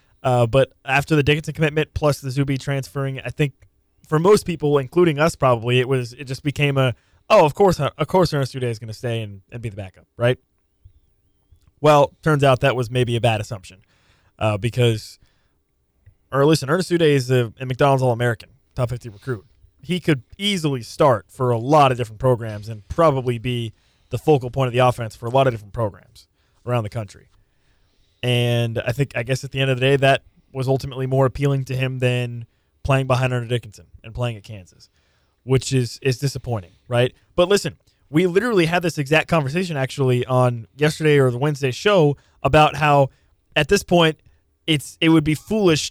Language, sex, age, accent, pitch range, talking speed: English, male, 20-39, American, 115-145 Hz, 195 wpm